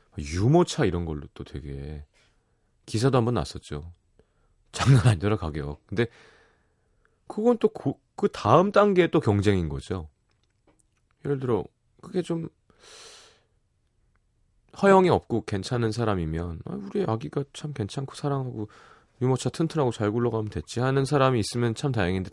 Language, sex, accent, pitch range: Korean, male, native, 85-130 Hz